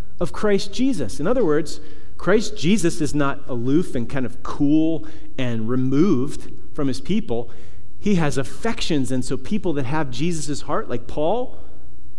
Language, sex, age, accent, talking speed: English, male, 40-59, American, 160 wpm